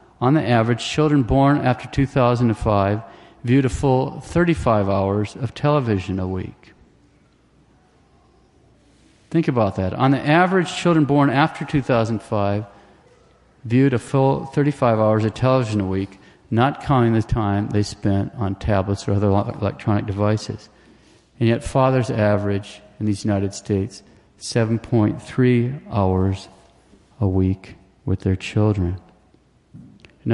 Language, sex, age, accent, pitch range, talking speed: English, male, 50-69, American, 100-130 Hz, 125 wpm